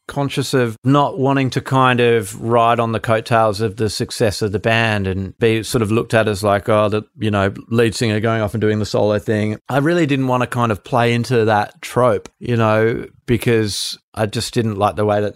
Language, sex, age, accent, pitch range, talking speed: English, male, 30-49, Australian, 110-130 Hz, 230 wpm